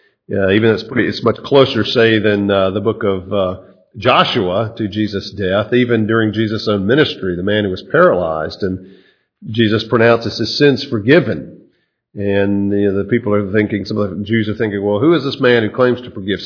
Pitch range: 100-125 Hz